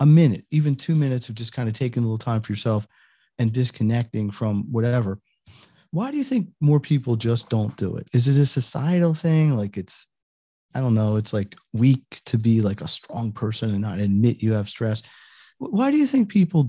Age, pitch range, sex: 40-59, 110-145 Hz, male